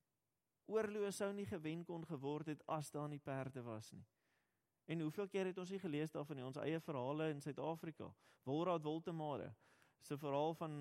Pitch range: 120-160 Hz